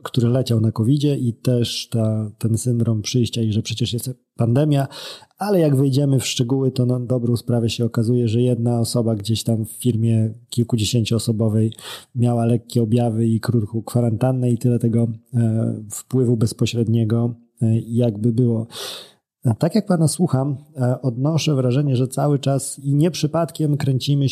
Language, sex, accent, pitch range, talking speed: Polish, male, native, 115-140 Hz, 160 wpm